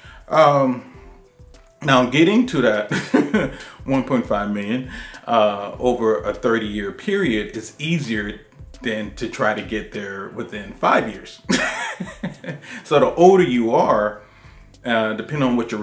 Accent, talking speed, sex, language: American, 130 wpm, male, English